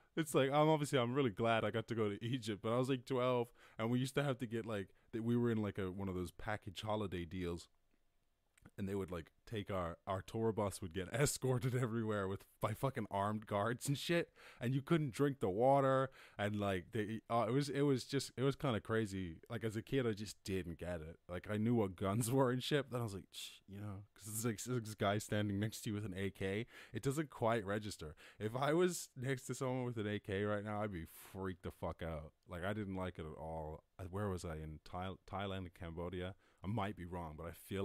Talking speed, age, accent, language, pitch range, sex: 250 wpm, 20-39, American, English, 95-125 Hz, male